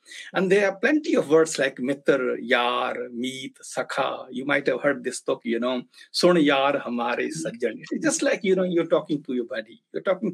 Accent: Indian